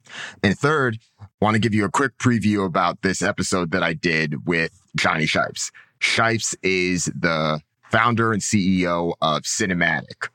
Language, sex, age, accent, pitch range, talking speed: English, male, 30-49, American, 90-110 Hz, 150 wpm